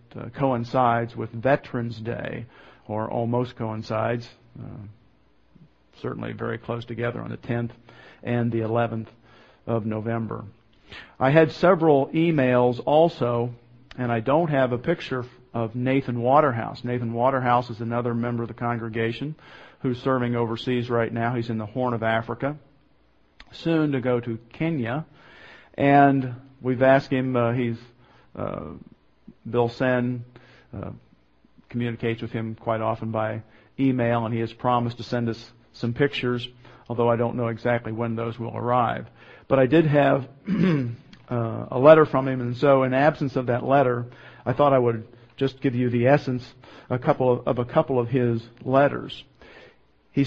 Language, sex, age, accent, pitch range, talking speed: English, male, 50-69, American, 115-130 Hz, 155 wpm